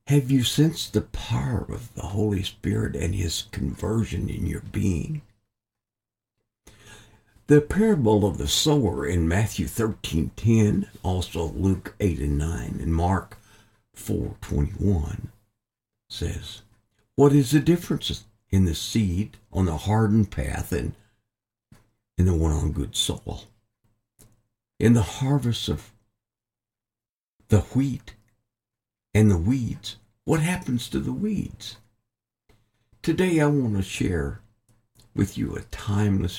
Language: English